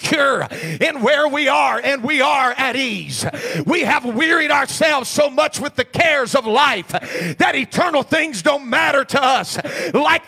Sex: male